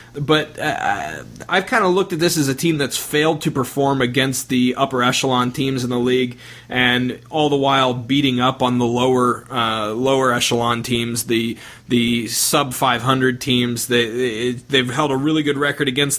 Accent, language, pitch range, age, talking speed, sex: American, English, 125-145 Hz, 30-49, 190 wpm, male